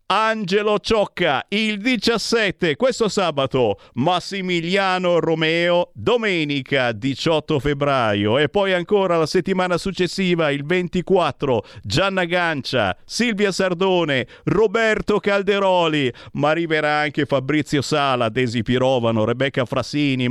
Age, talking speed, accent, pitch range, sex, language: 50-69, 100 wpm, native, 115-175 Hz, male, Italian